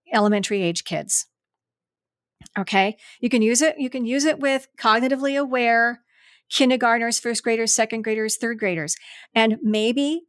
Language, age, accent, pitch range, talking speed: English, 50-69, American, 205-260 Hz, 140 wpm